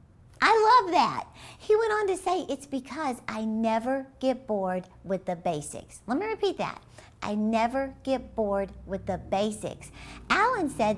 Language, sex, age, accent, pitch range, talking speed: English, female, 50-69, American, 200-260 Hz, 165 wpm